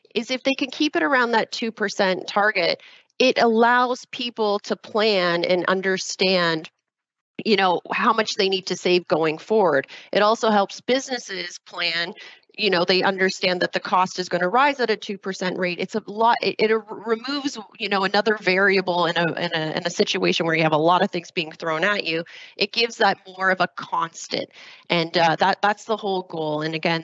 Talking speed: 200 wpm